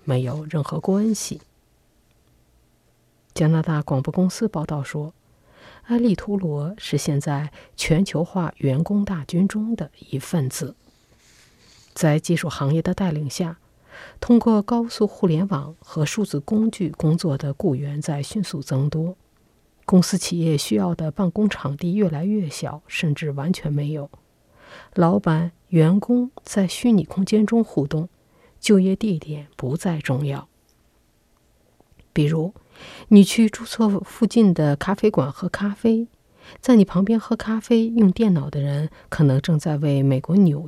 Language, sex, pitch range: Chinese, female, 150-200 Hz